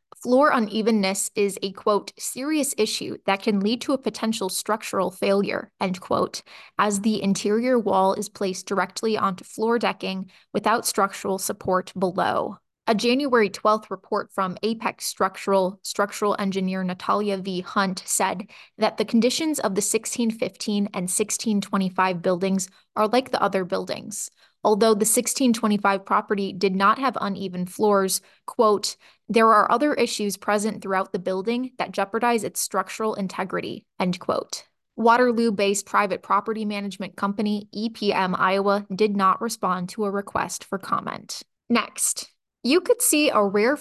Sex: female